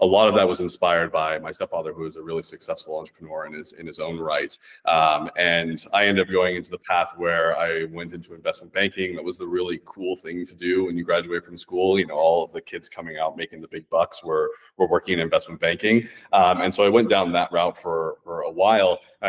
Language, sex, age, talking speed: English, male, 30-49, 250 wpm